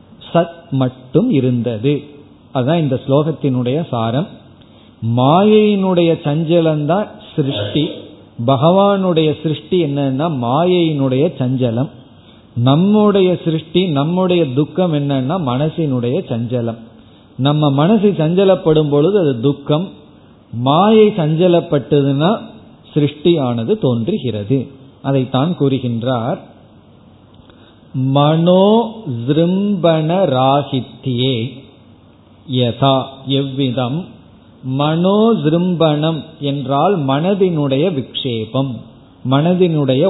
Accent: native